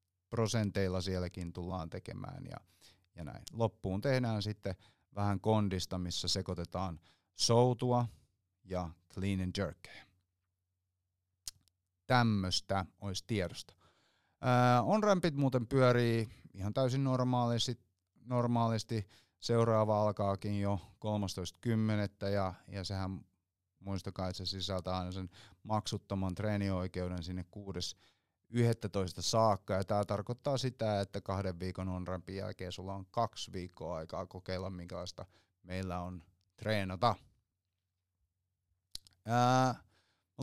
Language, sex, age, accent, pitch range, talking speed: Finnish, male, 30-49, native, 90-110 Hz, 100 wpm